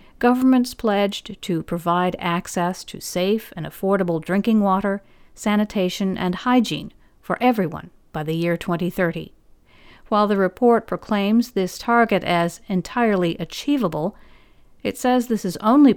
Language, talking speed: English, 130 wpm